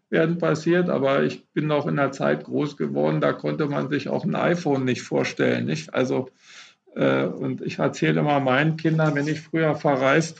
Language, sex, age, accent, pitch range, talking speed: German, male, 50-69, German, 135-170 Hz, 190 wpm